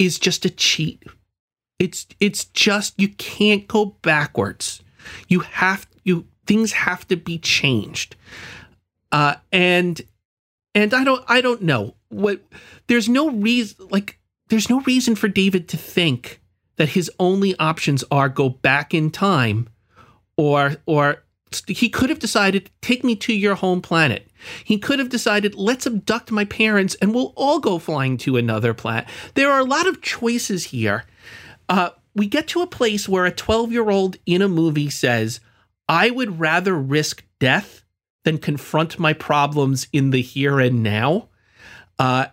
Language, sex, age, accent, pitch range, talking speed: English, male, 40-59, American, 135-210 Hz, 155 wpm